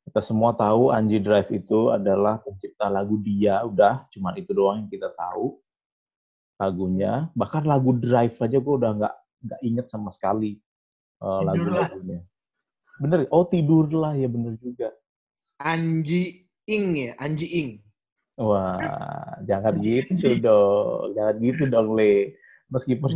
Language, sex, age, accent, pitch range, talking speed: Indonesian, male, 30-49, native, 110-145 Hz, 130 wpm